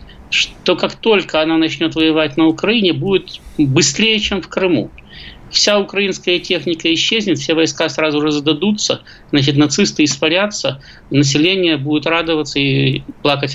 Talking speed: 130 wpm